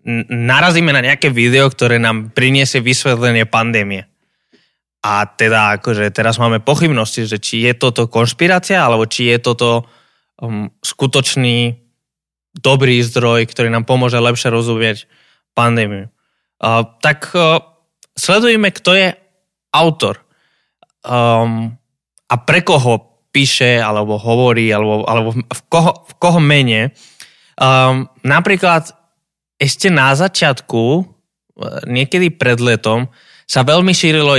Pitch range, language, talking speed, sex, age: 110-140 Hz, Slovak, 100 wpm, male, 20-39